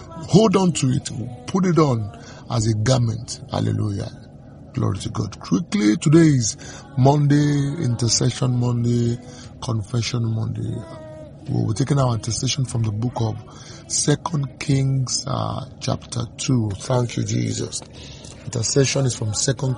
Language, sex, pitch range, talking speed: English, male, 120-140 Hz, 130 wpm